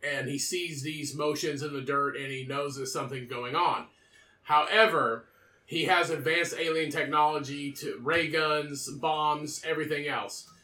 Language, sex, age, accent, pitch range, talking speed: English, male, 30-49, American, 140-170 Hz, 150 wpm